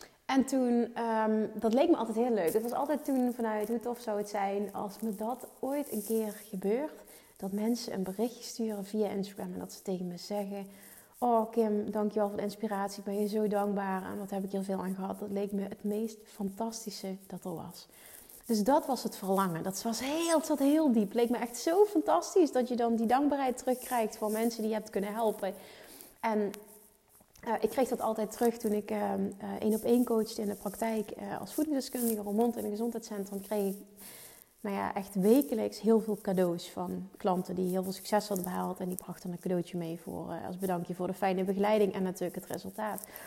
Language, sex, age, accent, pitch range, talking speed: Dutch, female, 30-49, Dutch, 200-245 Hz, 220 wpm